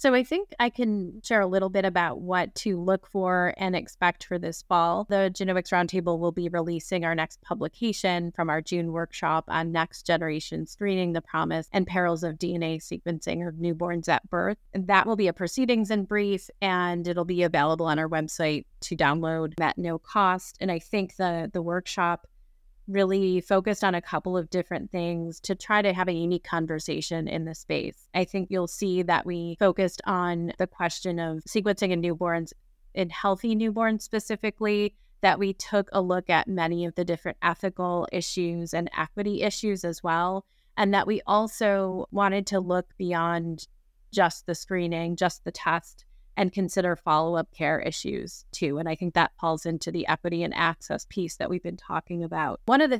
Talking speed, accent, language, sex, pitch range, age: 185 wpm, American, English, female, 170-195 Hz, 30-49